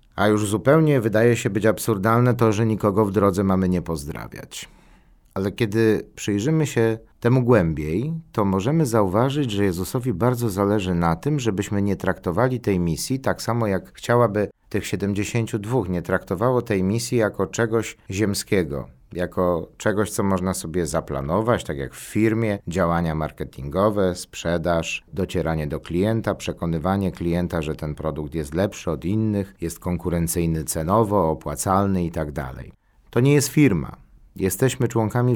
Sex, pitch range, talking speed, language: male, 90-120 Hz, 145 wpm, Polish